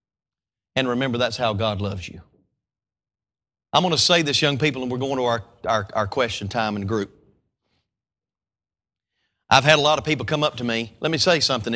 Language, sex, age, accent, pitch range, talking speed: English, male, 30-49, American, 120-195 Hz, 205 wpm